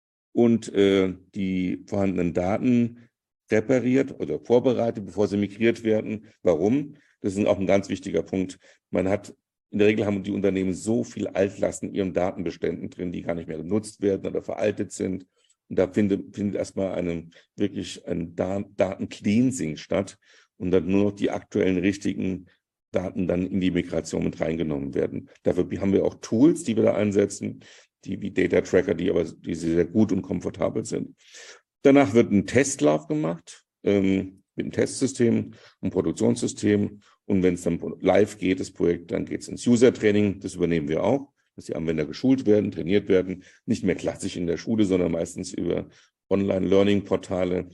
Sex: male